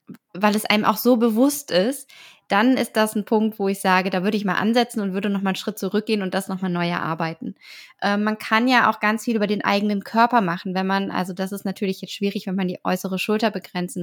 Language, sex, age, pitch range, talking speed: German, female, 20-39, 190-215 Hz, 245 wpm